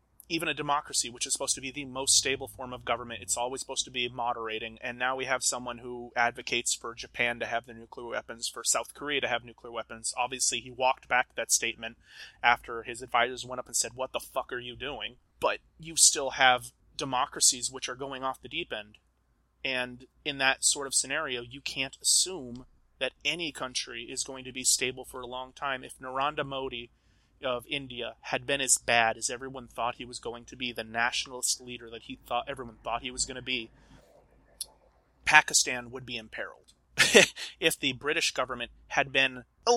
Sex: male